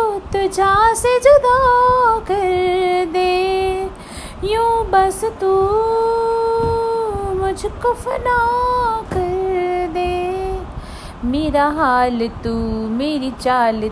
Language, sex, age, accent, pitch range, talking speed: Hindi, female, 30-49, native, 215-325 Hz, 70 wpm